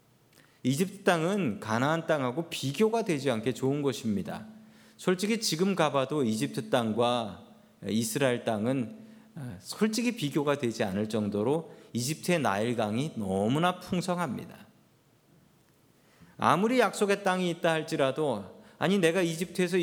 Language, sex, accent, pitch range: Korean, male, native, 130-190 Hz